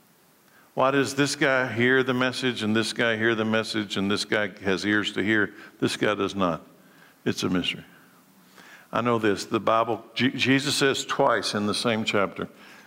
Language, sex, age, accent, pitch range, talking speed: English, male, 60-79, American, 105-120 Hz, 180 wpm